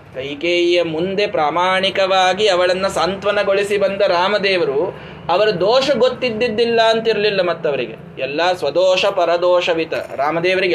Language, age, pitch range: Kannada, 20-39, 170-225 Hz